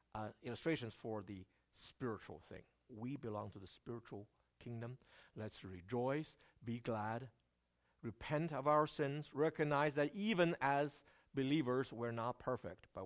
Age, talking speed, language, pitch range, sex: 60-79, 130 wpm, English, 100-150 Hz, male